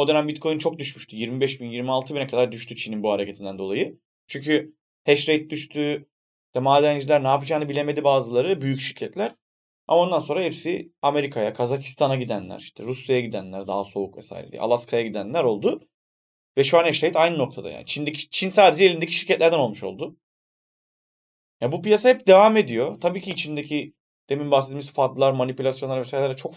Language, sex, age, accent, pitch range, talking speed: Turkish, male, 30-49, native, 125-150 Hz, 165 wpm